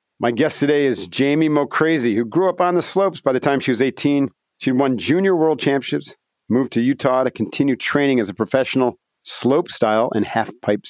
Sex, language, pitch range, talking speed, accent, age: male, English, 115-145 Hz, 195 wpm, American, 50-69